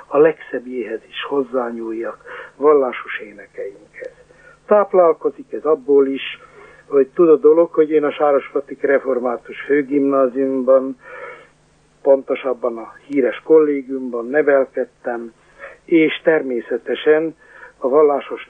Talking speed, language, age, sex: 95 wpm, Hungarian, 60-79, male